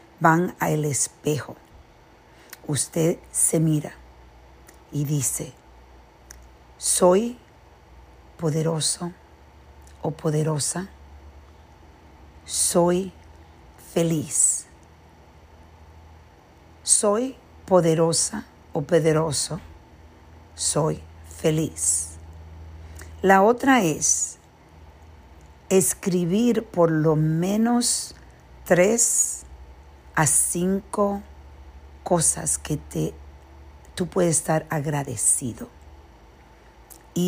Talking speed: 60 wpm